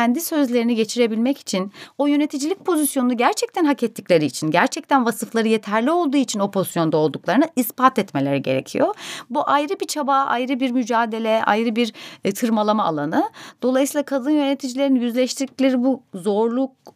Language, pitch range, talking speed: Turkish, 170-265 Hz, 140 wpm